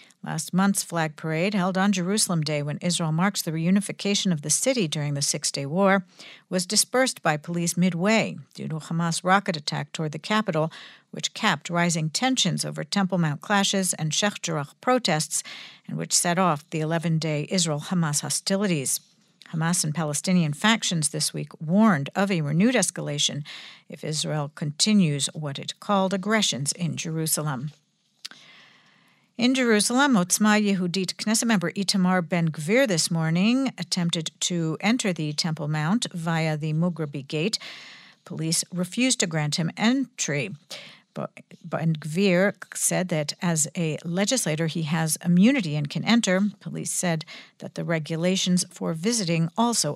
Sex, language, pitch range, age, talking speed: female, English, 160-200 Hz, 60-79, 145 wpm